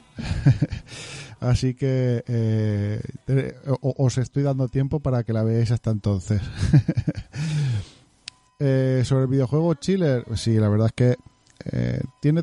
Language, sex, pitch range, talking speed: Spanish, male, 110-130 Hz, 120 wpm